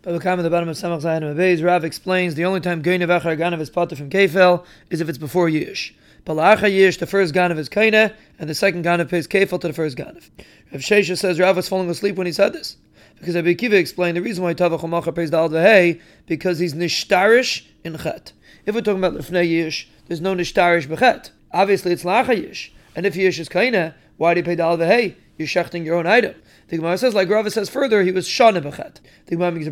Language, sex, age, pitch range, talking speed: English, male, 30-49, 170-195 Hz, 225 wpm